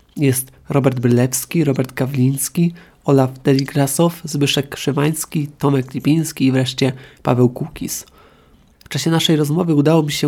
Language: Polish